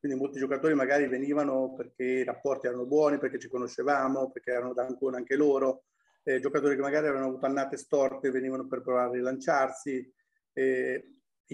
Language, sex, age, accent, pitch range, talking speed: Italian, male, 30-49, native, 125-150 Hz, 170 wpm